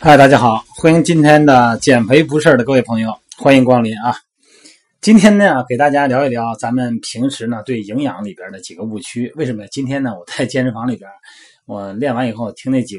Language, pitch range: Chinese, 115-180 Hz